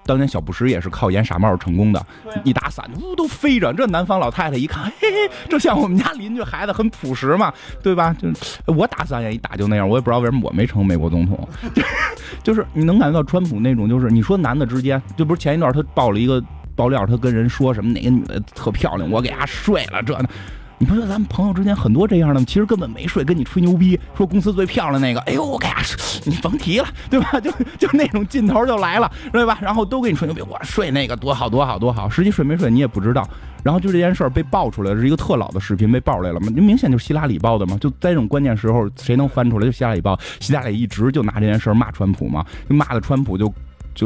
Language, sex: English, male